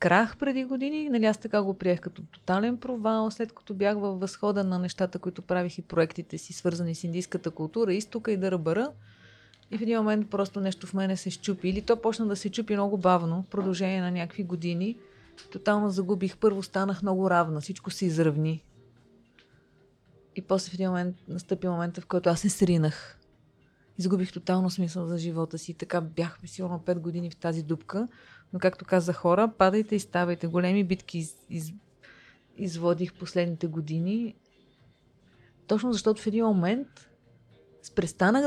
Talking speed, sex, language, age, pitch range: 170 wpm, female, Bulgarian, 30-49, 175-200 Hz